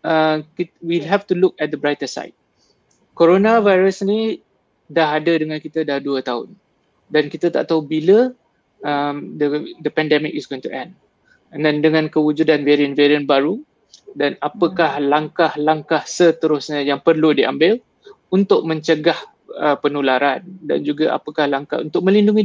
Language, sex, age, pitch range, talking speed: Malay, male, 20-39, 145-180 Hz, 145 wpm